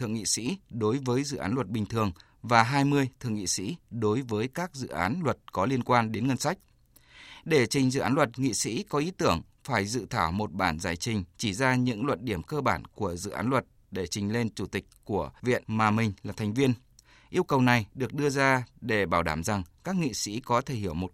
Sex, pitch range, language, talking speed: male, 105-130 Hz, Vietnamese, 240 wpm